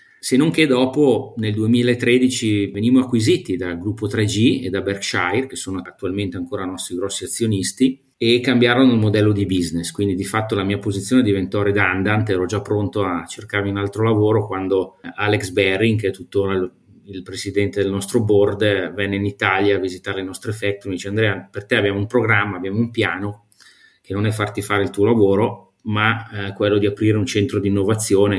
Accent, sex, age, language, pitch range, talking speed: native, male, 30-49, Italian, 95-115 Hz, 190 wpm